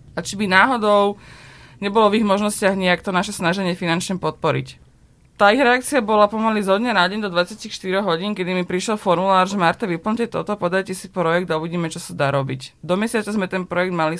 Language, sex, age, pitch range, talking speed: Slovak, female, 20-39, 165-195 Hz, 200 wpm